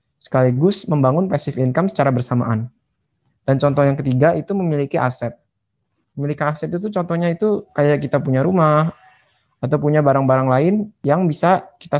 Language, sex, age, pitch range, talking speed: Indonesian, male, 20-39, 130-170 Hz, 145 wpm